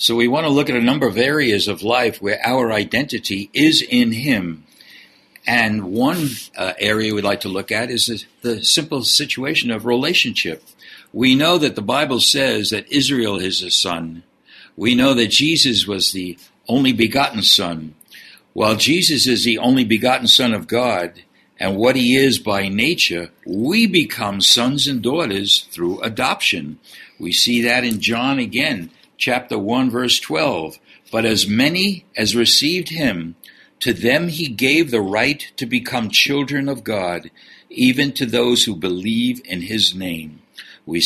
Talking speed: 165 wpm